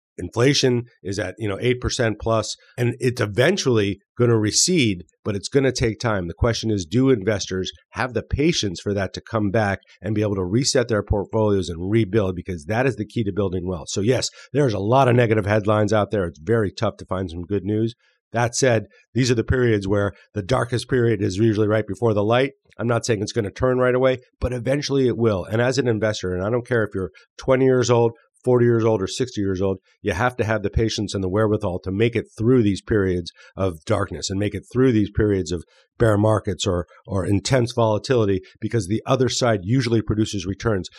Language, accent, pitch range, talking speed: English, American, 100-120 Hz, 220 wpm